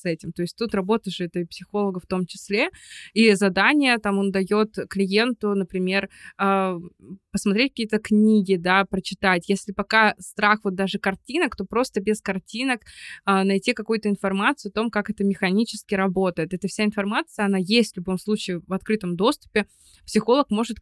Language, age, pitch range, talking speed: Russian, 20-39, 190-225 Hz, 160 wpm